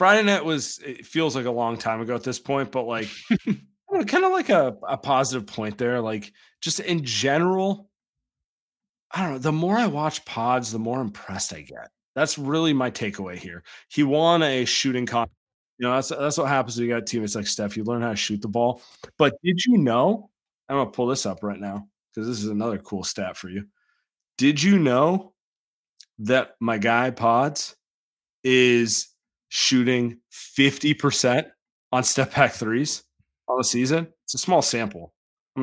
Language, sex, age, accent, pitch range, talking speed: English, male, 30-49, American, 110-150 Hz, 185 wpm